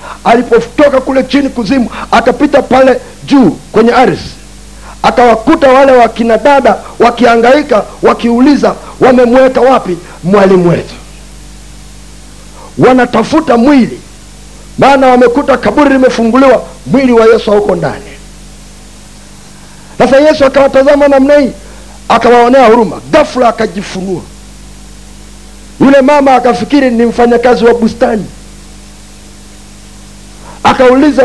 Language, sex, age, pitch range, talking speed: Swahili, male, 50-69, 165-260 Hz, 90 wpm